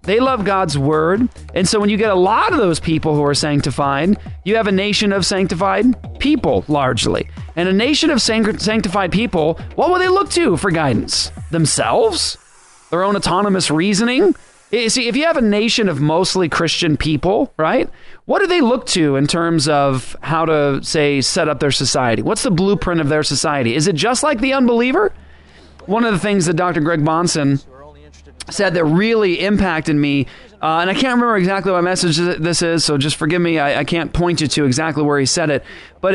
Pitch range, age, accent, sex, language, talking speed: 150-210 Hz, 30-49, American, male, English, 200 wpm